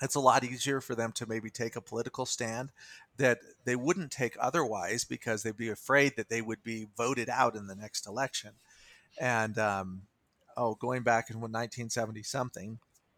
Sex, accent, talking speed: male, American, 180 wpm